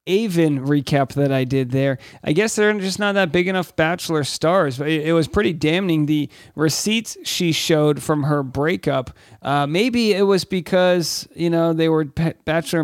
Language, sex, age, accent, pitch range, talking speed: English, male, 40-59, American, 155-195 Hz, 180 wpm